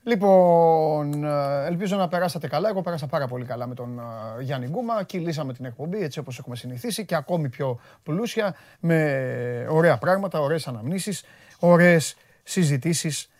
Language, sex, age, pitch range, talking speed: Greek, male, 30-49, 140-205 Hz, 145 wpm